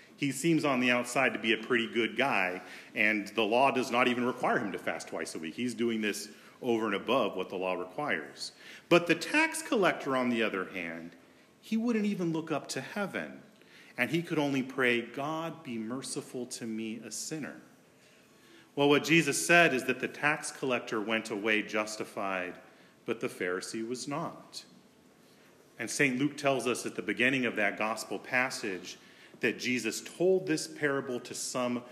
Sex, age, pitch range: male, 40-59, 115-145 Hz